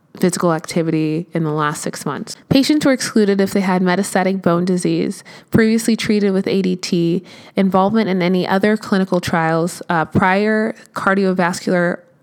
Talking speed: 140 wpm